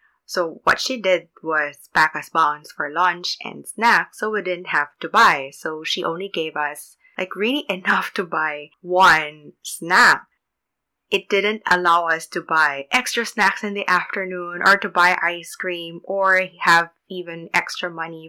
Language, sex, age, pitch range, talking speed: English, female, 20-39, 165-205 Hz, 165 wpm